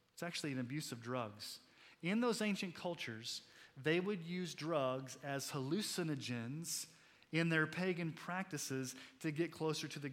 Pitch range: 130-170 Hz